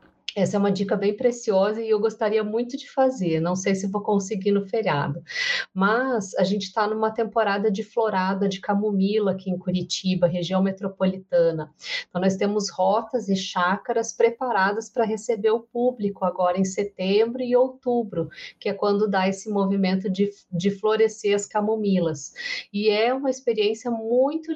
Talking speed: 160 wpm